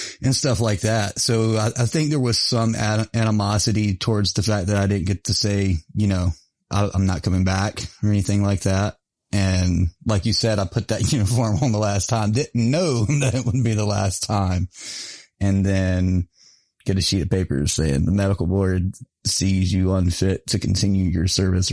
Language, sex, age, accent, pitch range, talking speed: English, male, 30-49, American, 90-110 Hz, 195 wpm